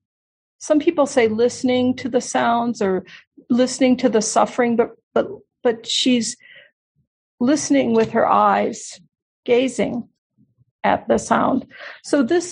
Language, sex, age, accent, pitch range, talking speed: English, female, 50-69, American, 220-275 Hz, 125 wpm